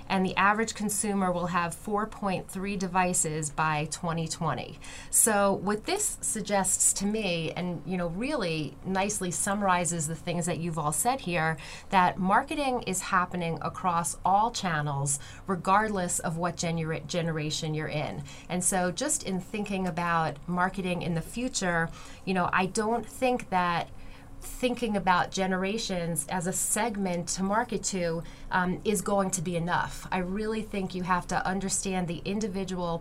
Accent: American